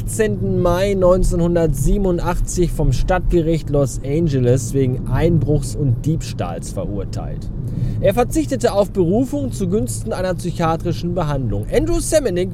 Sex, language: male, German